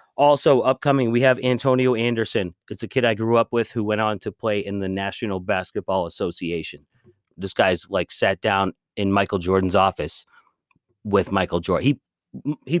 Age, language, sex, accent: 30-49, English, male, American